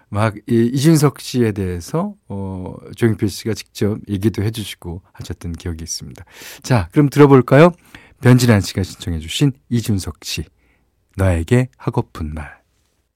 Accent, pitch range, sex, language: native, 95-125 Hz, male, Korean